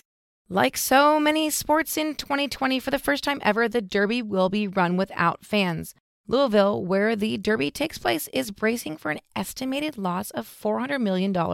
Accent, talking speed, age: American, 170 wpm, 30-49